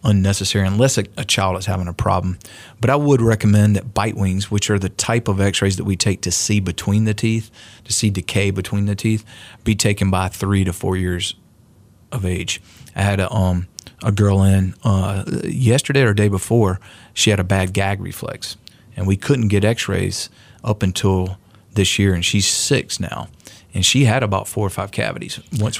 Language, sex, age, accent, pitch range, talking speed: English, male, 40-59, American, 100-110 Hz, 200 wpm